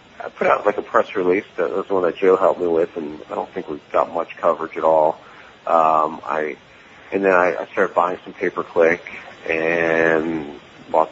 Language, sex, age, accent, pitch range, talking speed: English, male, 40-59, American, 80-95 Hz, 205 wpm